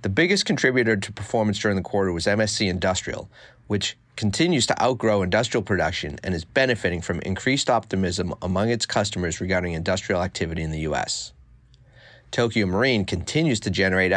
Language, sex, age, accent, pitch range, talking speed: English, male, 40-59, American, 95-115 Hz, 155 wpm